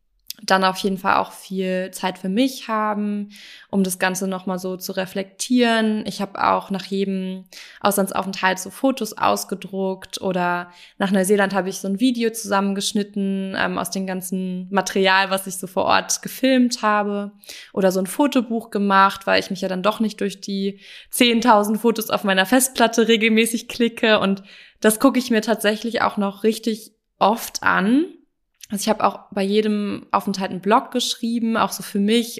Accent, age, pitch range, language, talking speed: German, 20-39, 190-220 Hz, German, 170 wpm